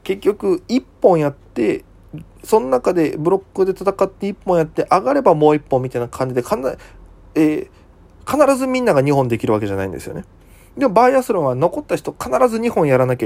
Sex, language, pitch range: male, Japanese, 115-185 Hz